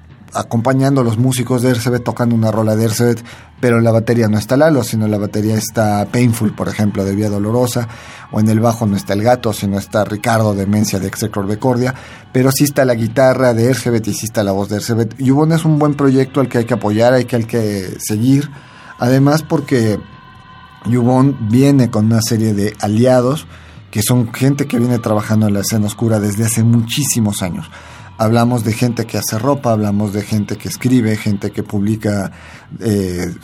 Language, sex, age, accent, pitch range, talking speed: Spanish, male, 40-59, Mexican, 105-125 Hz, 195 wpm